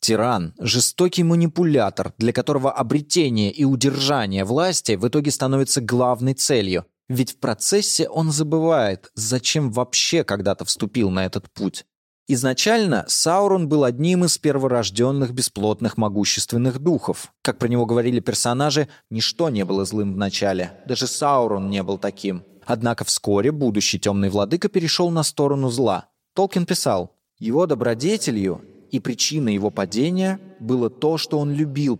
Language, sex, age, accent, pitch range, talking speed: Russian, male, 20-39, native, 110-155 Hz, 140 wpm